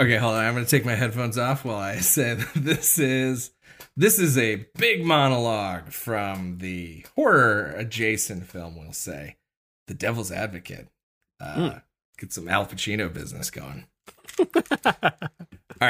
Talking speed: 140 wpm